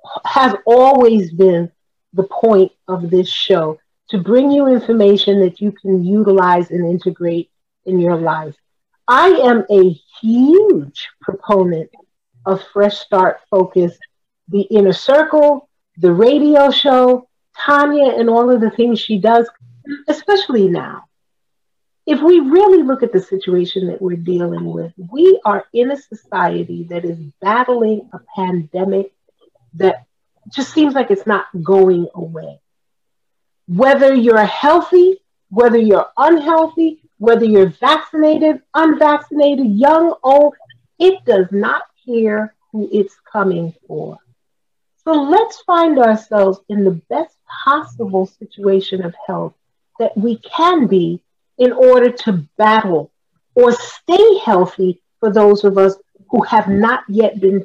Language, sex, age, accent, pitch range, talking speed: English, female, 40-59, American, 185-275 Hz, 130 wpm